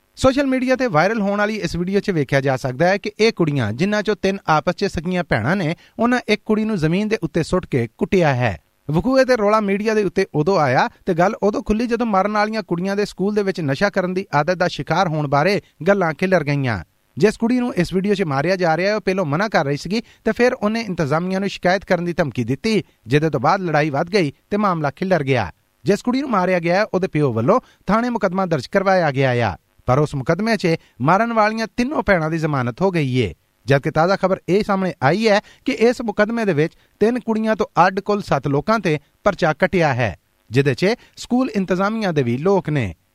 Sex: male